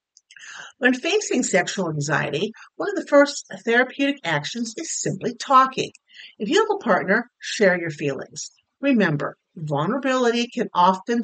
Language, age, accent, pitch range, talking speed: English, 50-69, American, 185-280 Hz, 135 wpm